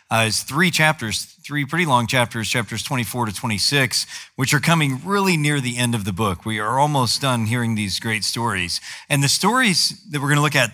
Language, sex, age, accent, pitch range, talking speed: English, male, 40-59, American, 110-140 Hz, 220 wpm